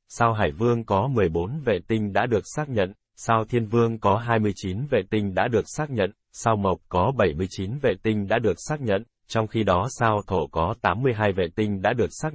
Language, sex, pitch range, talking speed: Vietnamese, male, 90-115 Hz, 215 wpm